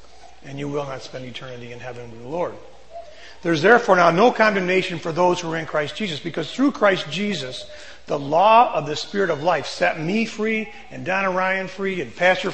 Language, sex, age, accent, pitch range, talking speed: English, male, 40-59, American, 145-190 Hz, 210 wpm